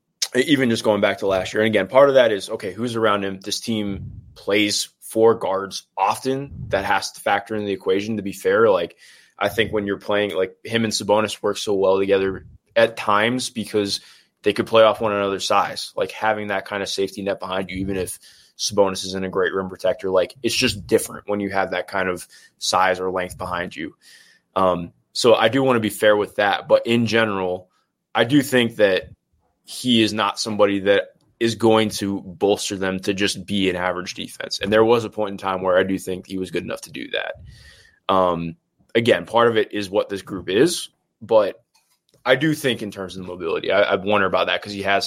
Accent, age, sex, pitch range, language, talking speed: American, 20-39, male, 95-115 Hz, English, 220 wpm